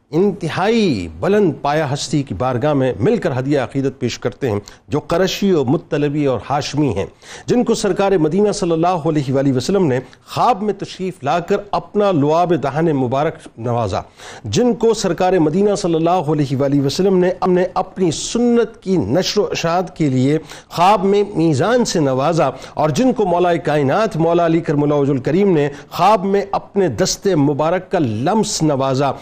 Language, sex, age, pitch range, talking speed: Urdu, male, 50-69, 150-220 Hz, 175 wpm